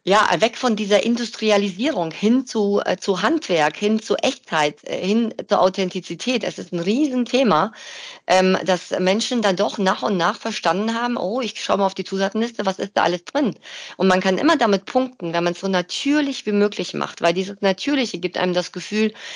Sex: female